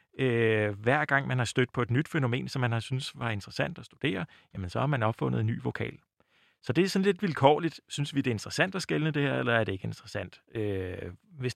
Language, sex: Danish, male